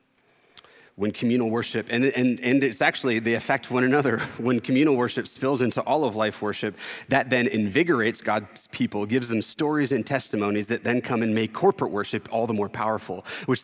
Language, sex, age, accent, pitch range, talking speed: English, male, 30-49, American, 105-125 Hz, 190 wpm